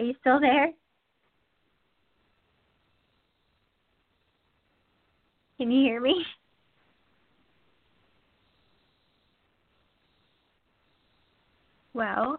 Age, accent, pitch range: 20-39, American, 205-245 Hz